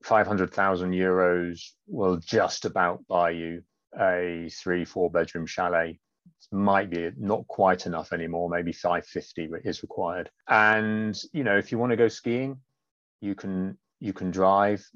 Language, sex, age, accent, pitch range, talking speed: English, male, 30-49, British, 90-110 Hz, 155 wpm